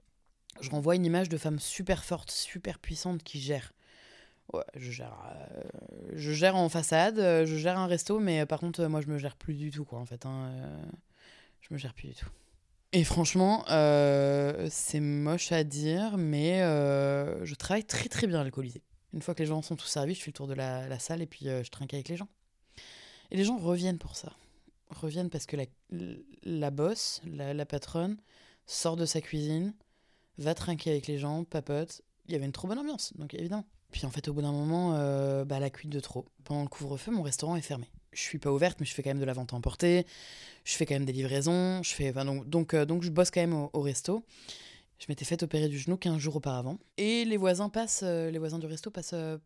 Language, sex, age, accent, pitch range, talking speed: French, female, 20-39, French, 140-175 Hz, 235 wpm